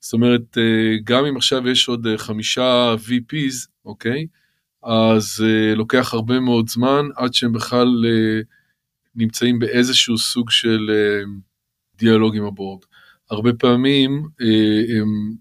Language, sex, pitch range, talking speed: Hebrew, male, 110-125 Hz, 115 wpm